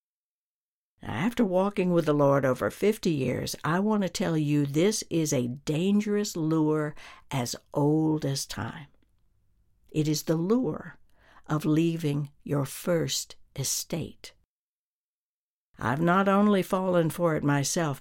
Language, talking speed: English, 125 wpm